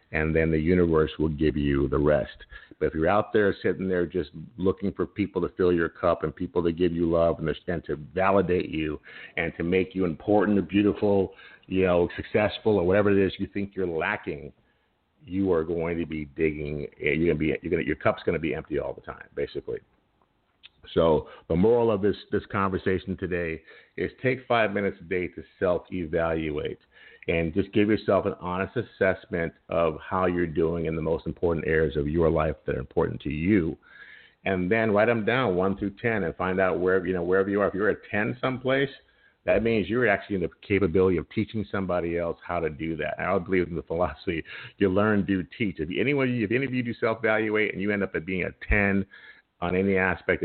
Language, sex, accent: English, male, American